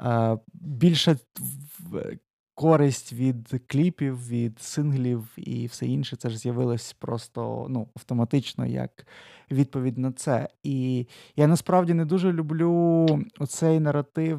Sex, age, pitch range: male, 20-39, 130-160 Hz